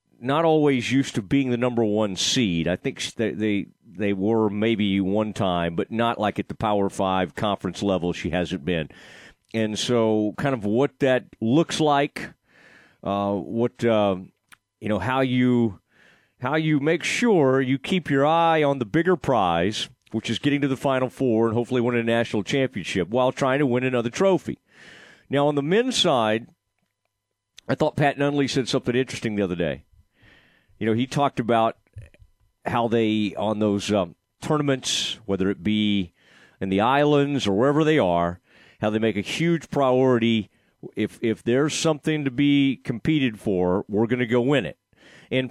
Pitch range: 105-140 Hz